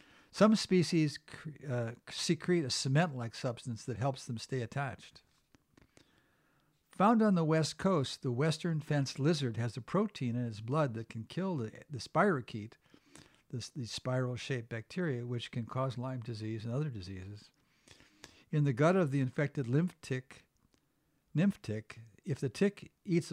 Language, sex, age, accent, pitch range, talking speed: English, male, 60-79, American, 120-155 Hz, 150 wpm